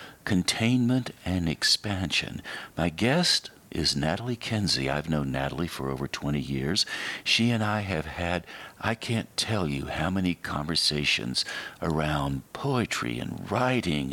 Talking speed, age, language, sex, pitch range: 130 wpm, 60-79, English, male, 70-110 Hz